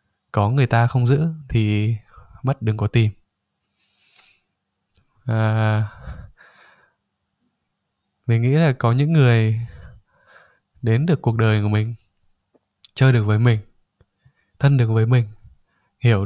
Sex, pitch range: male, 105-130 Hz